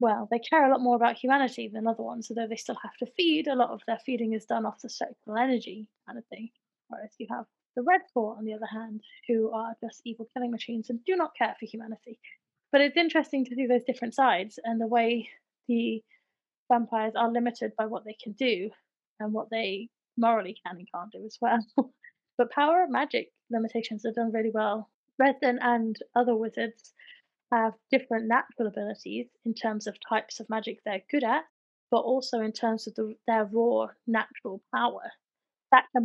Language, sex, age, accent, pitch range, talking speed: English, female, 20-39, British, 220-245 Hz, 200 wpm